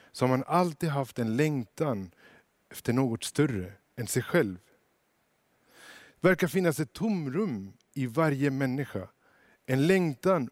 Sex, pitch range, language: male, 125-170 Hz, Swedish